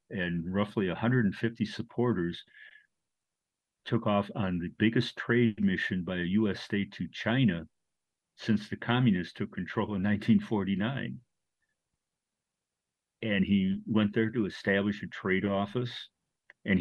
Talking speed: 120 wpm